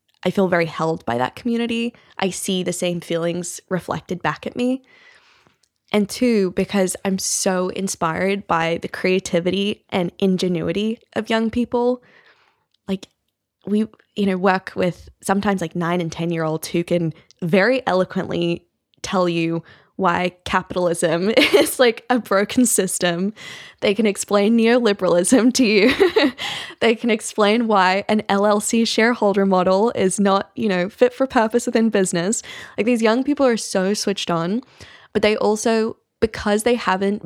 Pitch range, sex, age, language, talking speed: 180-225 Hz, female, 10-29, English, 150 wpm